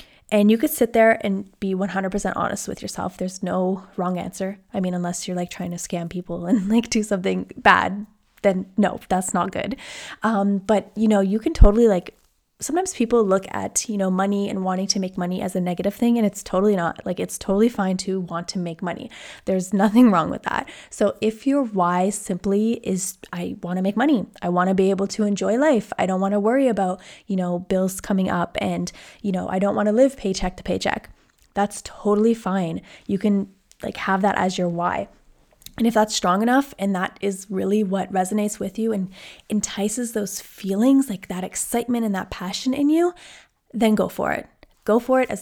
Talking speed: 215 wpm